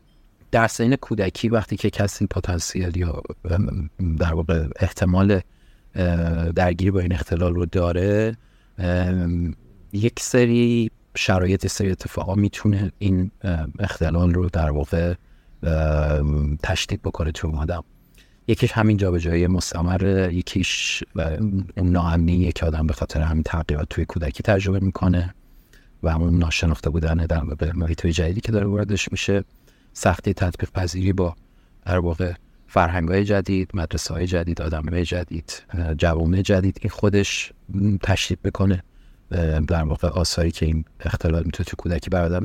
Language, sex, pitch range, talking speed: Persian, male, 85-105 Hz, 130 wpm